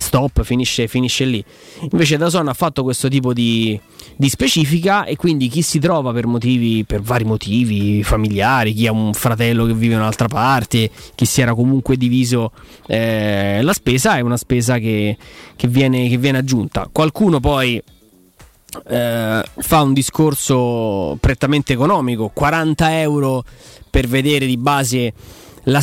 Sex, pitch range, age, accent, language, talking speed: male, 115-140 Hz, 20-39, native, Italian, 155 wpm